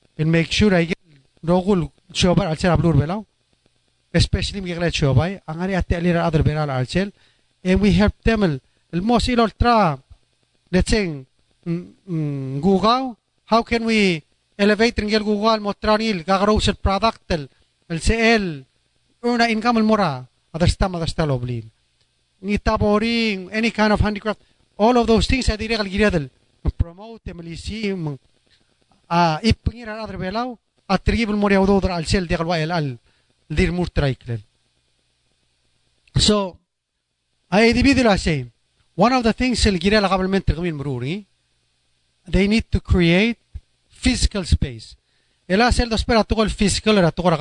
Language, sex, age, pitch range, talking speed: English, male, 30-49, 130-210 Hz, 105 wpm